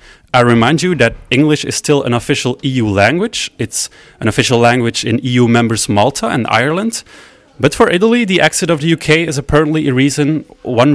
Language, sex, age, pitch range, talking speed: French, male, 30-49, 130-170 Hz, 185 wpm